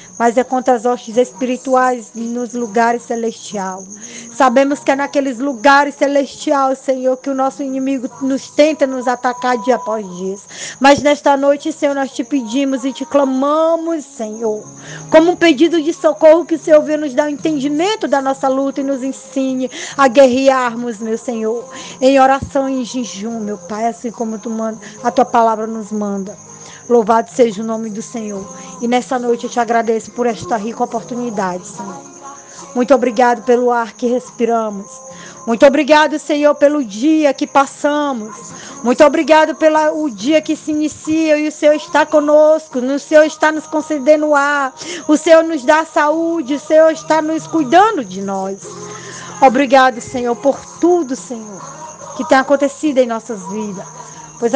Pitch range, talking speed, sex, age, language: 235-295 Hz, 165 wpm, female, 20-39, Portuguese